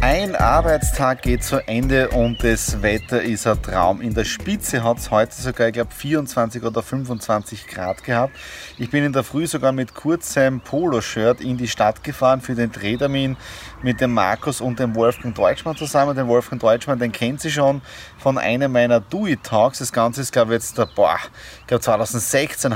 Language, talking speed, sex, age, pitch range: German, 190 wpm, male, 30-49, 120-145 Hz